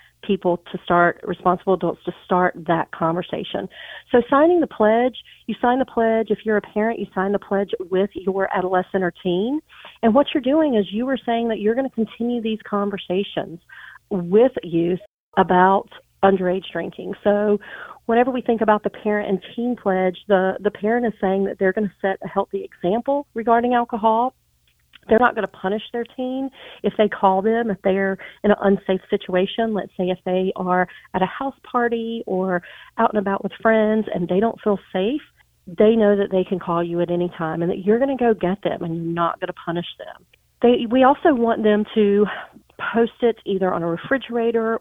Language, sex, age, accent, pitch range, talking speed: English, female, 40-59, American, 185-230 Hz, 200 wpm